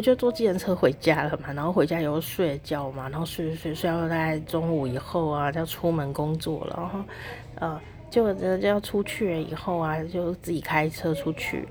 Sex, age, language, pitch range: female, 30-49, Chinese, 150-190 Hz